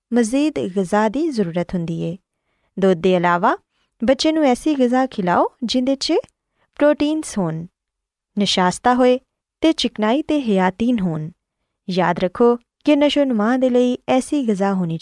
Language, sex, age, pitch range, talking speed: Urdu, female, 20-39, 185-275 Hz, 110 wpm